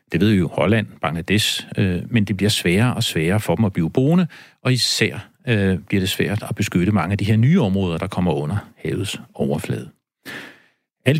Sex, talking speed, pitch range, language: male, 205 wpm, 95-120 Hz, Danish